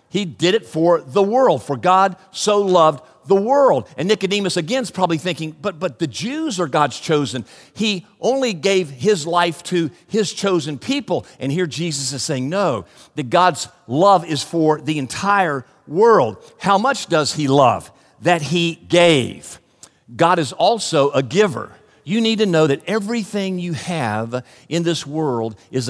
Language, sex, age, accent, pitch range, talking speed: English, male, 50-69, American, 125-180 Hz, 170 wpm